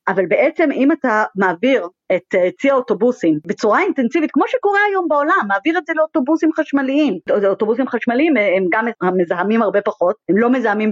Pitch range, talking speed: 195-285 Hz, 160 wpm